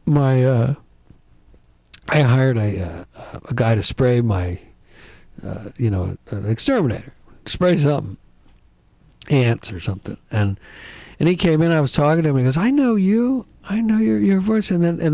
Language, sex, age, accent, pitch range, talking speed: English, male, 60-79, American, 120-170 Hz, 175 wpm